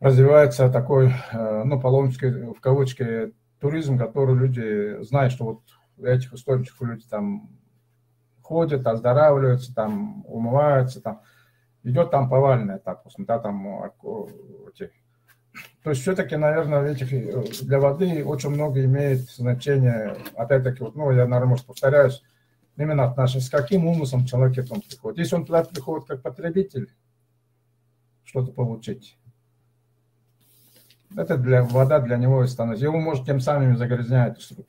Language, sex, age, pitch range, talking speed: Russian, male, 50-69, 120-140 Hz, 125 wpm